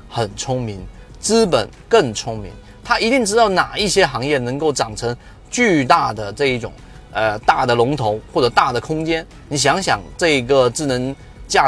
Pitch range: 120-175 Hz